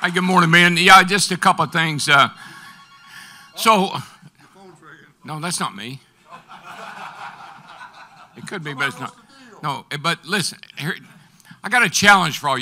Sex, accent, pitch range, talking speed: male, American, 145-185 Hz, 145 wpm